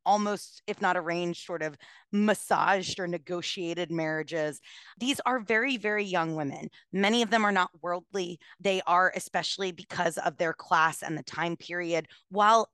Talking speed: 160 wpm